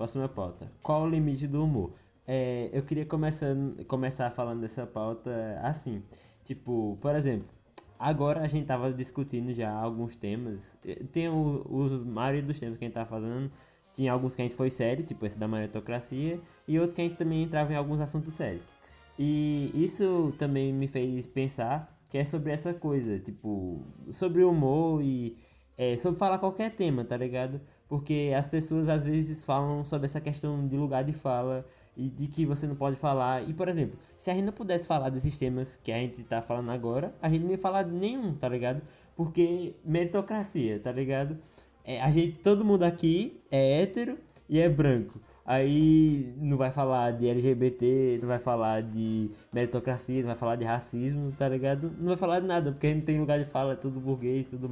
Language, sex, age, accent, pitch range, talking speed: Portuguese, male, 20-39, Brazilian, 120-155 Hz, 195 wpm